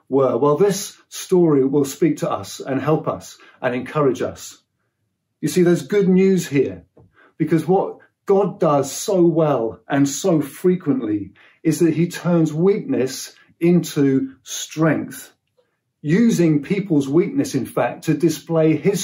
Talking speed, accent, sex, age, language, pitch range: 140 wpm, British, male, 50-69, English, 140-175 Hz